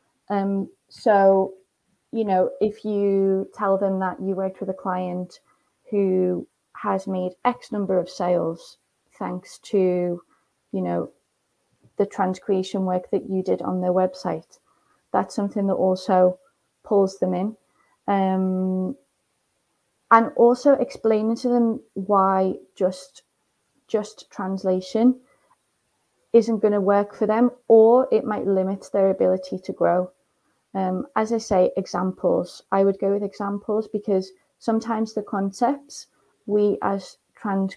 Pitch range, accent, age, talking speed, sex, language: 185-210 Hz, British, 30-49, 130 wpm, female, English